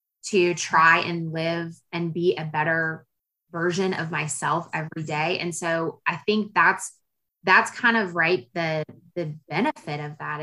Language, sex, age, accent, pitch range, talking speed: English, female, 20-39, American, 160-190 Hz, 155 wpm